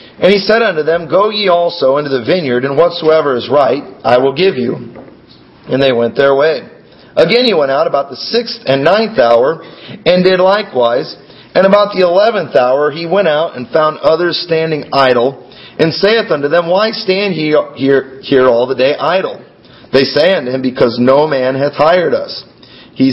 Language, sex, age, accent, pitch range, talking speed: English, male, 40-59, American, 135-185 Hz, 190 wpm